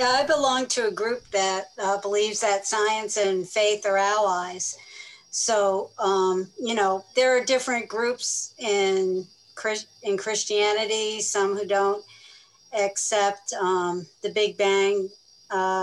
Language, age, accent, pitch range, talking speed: English, 50-69, American, 190-215 Hz, 135 wpm